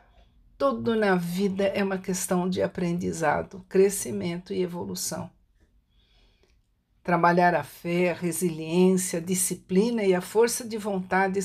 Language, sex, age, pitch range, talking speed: Portuguese, female, 60-79, 175-205 Hz, 120 wpm